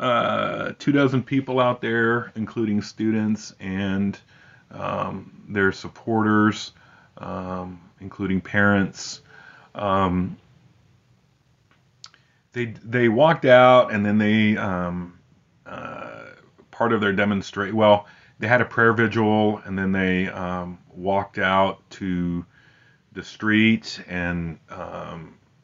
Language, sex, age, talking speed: English, male, 30-49, 110 wpm